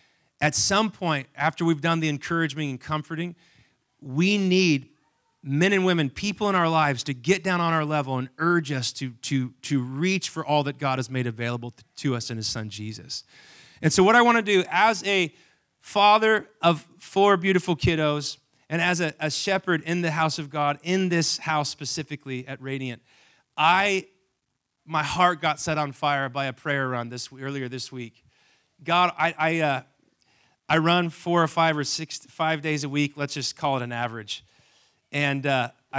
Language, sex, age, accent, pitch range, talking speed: English, male, 30-49, American, 135-170 Hz, 185 wpm